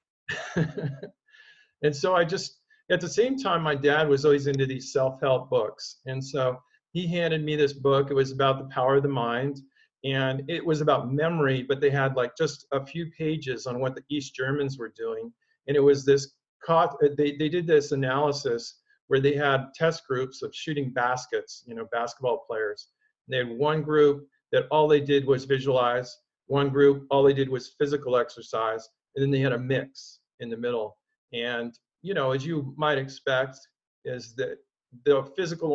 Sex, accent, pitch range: male, American, 135-175 Hz